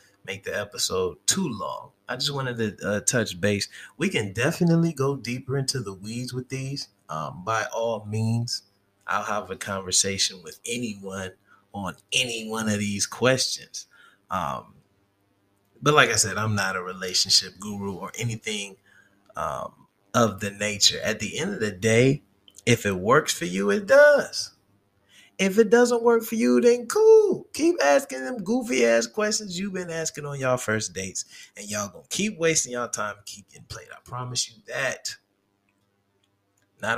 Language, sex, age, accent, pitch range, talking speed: English, male, 30-49, American, 100-130 Hz, 170 wpm